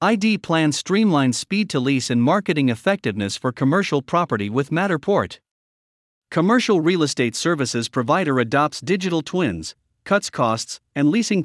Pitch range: 130-185 Hz